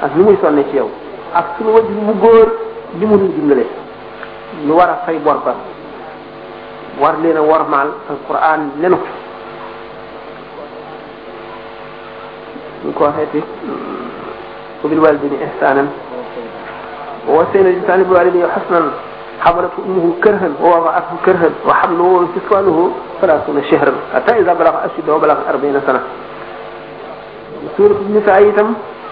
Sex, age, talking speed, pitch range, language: male, 50-69, 50 wpm, 155-210 Hz, French